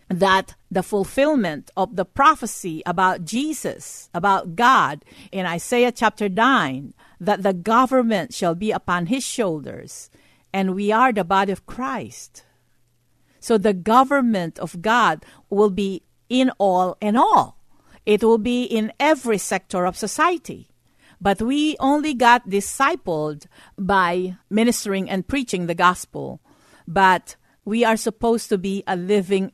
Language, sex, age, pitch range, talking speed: English, female, 50-69, 170-225 Hz, 135 wpm